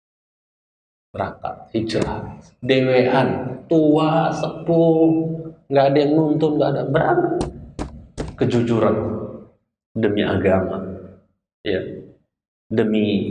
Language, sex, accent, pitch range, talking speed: Indonesian, male, native, 115-160 Hz, 75 wpm